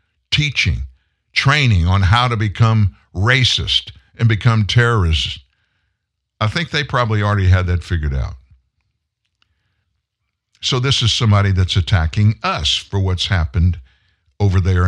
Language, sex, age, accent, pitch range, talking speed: English, male, 60-79, American, 95-125 Hz, 125 wpm